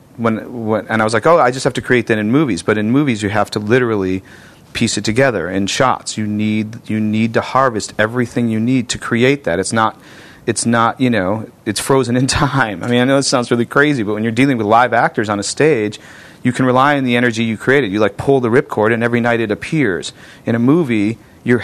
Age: 40-59